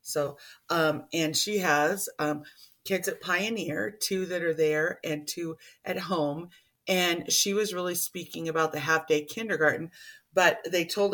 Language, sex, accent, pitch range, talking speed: English, female, American, 145-180 Hz, 160 wpm